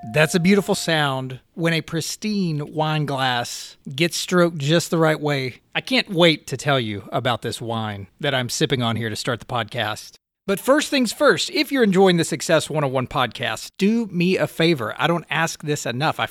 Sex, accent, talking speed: male, American, 200 wpm